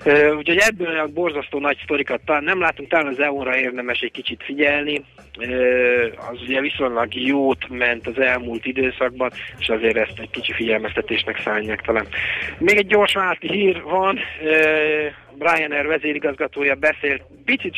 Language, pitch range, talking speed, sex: Hungarian, 115-140 Hz, 155 wpm, male